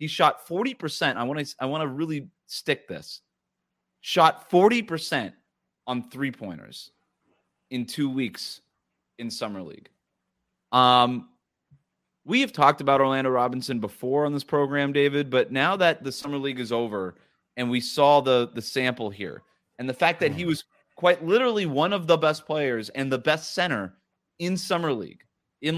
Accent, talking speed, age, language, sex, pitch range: American, 160 wpm, 30-49, English, male, 120-160 Hz